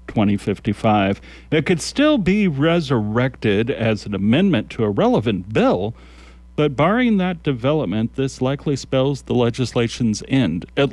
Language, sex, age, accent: English, male, 40-59, American